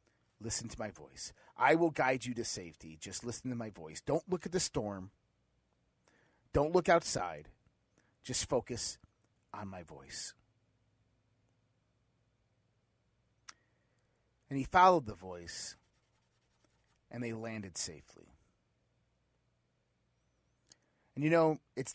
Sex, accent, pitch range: male, American, 105-140 Hz